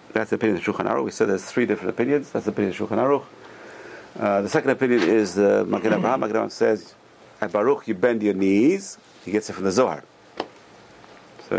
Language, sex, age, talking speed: English, male, 50-69, 205 wpm